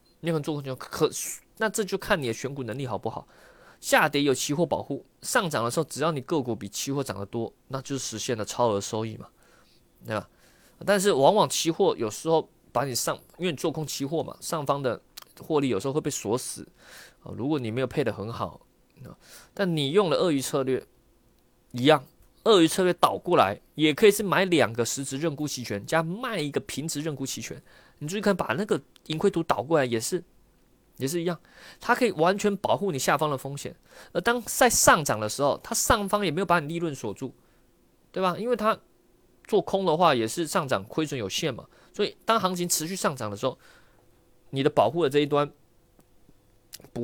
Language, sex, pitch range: Chinese, male, 125-180 Hz